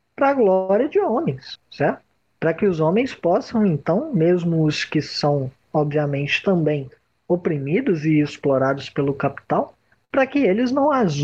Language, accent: Portuguese, Brazilian